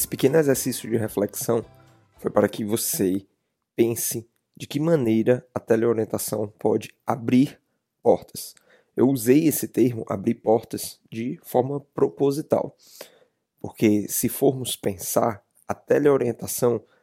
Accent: Brazilian